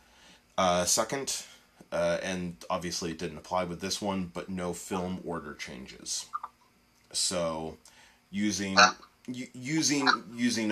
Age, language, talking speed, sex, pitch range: 20-39, English, 110 wpm, male, 85-105 Hz